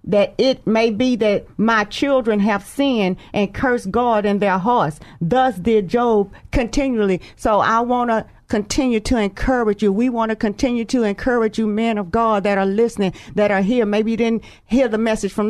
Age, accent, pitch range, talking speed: 40-59, American, 210-245 Hz, 195 wpm